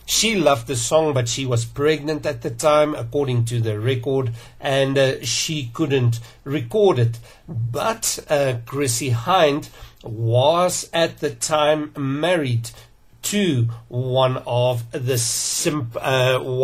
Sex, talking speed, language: male, 135 wpm, English